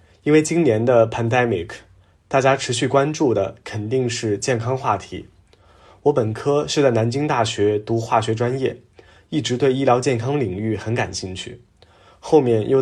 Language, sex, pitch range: Chinese, male, 110-135 Hz